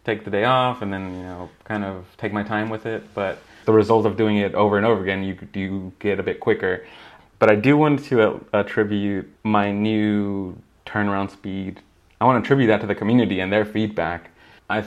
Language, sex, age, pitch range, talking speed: English, male, 20-39, 95-110 Hz, 220 wpm